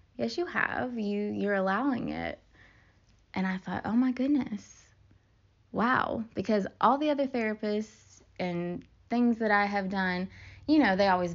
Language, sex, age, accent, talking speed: English, female, 20-39, American, 160 wpm